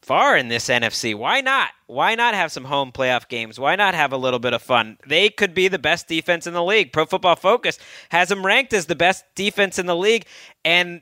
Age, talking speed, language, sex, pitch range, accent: 30-49, 240 wpm, English, male, 155-200 Hz, American